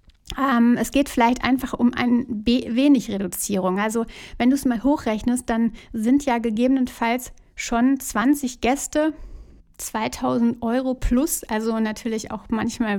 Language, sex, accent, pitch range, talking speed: German, female, German, 225-260 Hz, 135 wpm